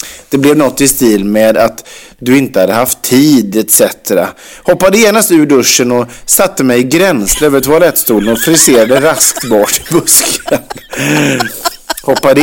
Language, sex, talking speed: Swedish, male, 150 wpm